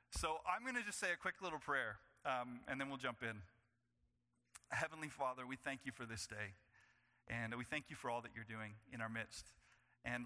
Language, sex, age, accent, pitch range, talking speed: English, male, 30-49, American, 115-145 Hz, 215 wpm